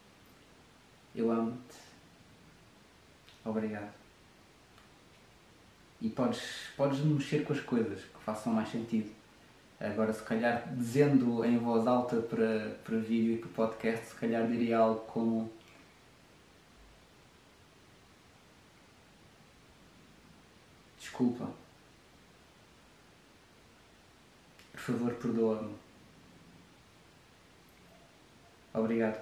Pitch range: 115-130 Hz